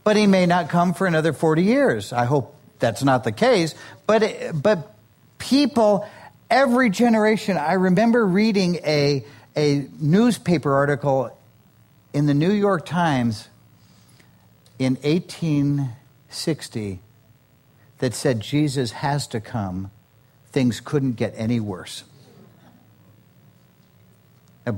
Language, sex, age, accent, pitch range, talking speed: English, male, 50-69, American, 120-170 Hz, 110 wpm